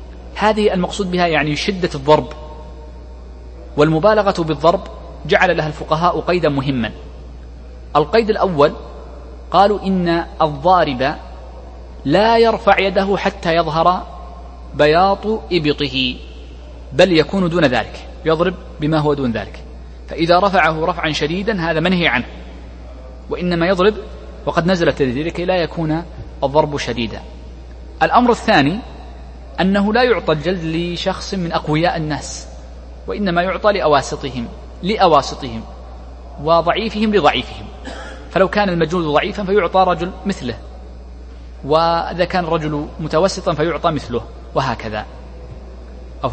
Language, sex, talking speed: Arabic, male, 105 wpm